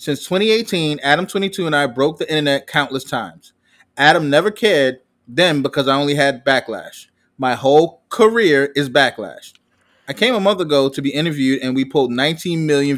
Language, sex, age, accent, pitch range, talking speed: English, male, 20-39, American, 130-165 Hz, 170 wpm